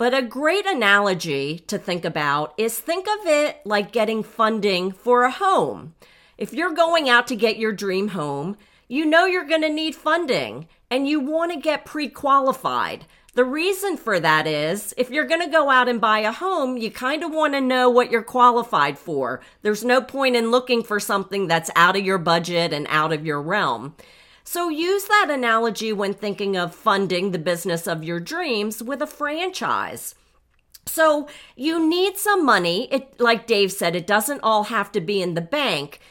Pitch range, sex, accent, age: 190-280 Hz, female, American, 40-59